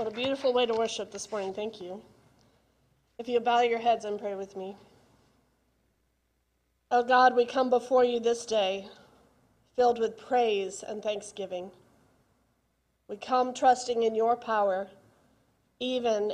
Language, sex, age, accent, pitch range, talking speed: English, female, 40-59, American, 190-230 Hz, 145 wpm